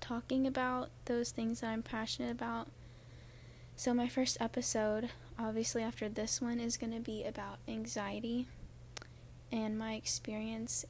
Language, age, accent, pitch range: English, 10-29, American, 215-240 Hz